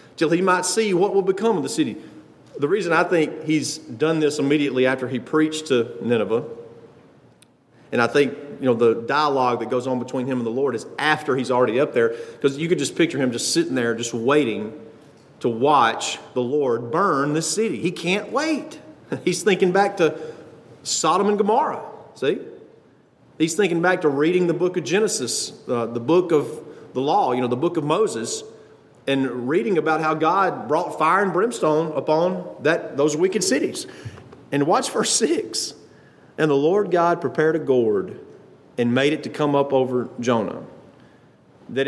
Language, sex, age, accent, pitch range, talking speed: English, male, 40-59, American, 130-180 Hz, 185 wpm